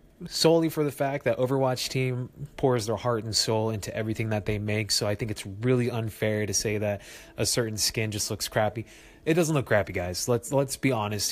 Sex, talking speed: male, 215 wpm